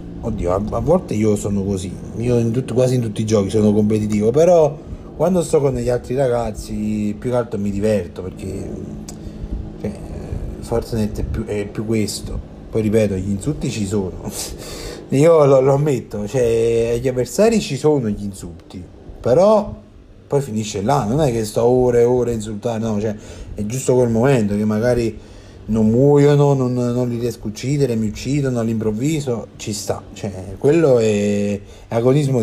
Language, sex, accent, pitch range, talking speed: Italian, male, native, 100-130 Hz, 170 wpm